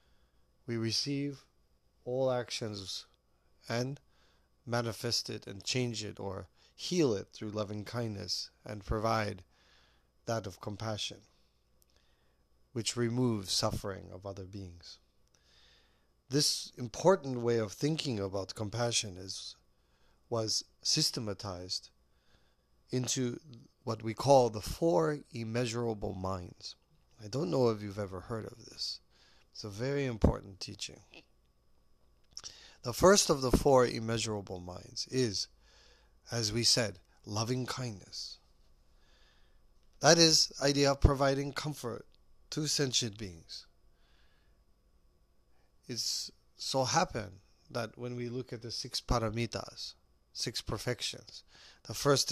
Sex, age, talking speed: male, 30-49, 110 wpm